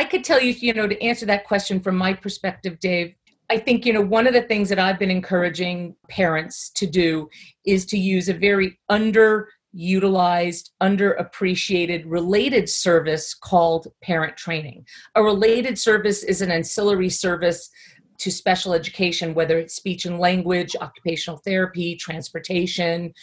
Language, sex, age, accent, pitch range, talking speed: English, female, 40-59, American, 170-200 Hz, 150 wpm